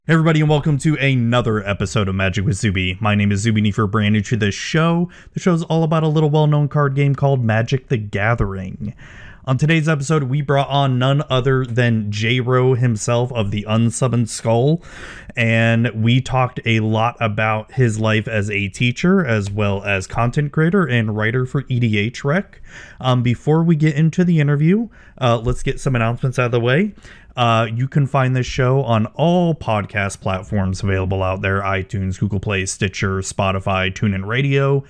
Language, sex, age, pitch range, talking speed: English, male, 30-49, 105-140 Hz, 185 wpm